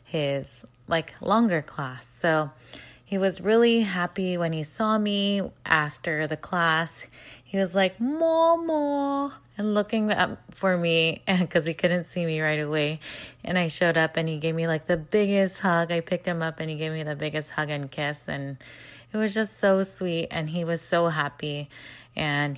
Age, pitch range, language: 20-39, 150-185 Hz, English